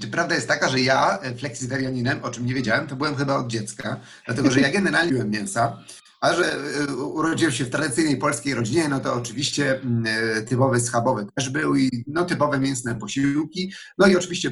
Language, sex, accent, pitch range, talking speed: Polish, male, native, 125-150 Hz, 180 wpm